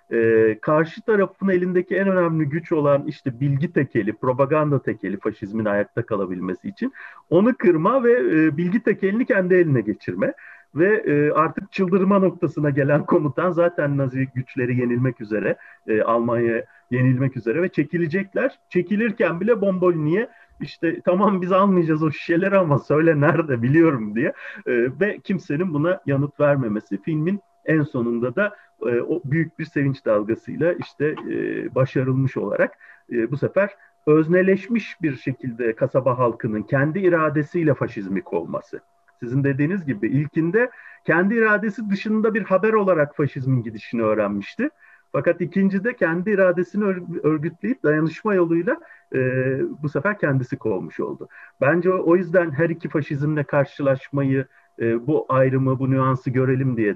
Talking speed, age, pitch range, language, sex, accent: 140 wpm, 40-59, 130-185 Hz, Turkish, male, native